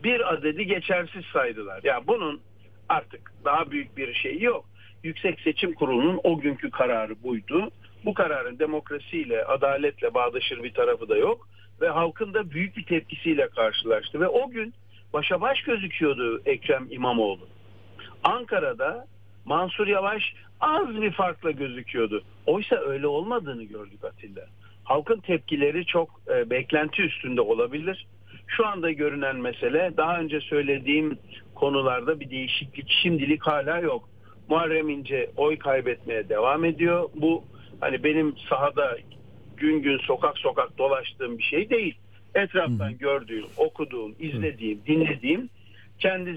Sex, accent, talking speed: male, native, 125 wpm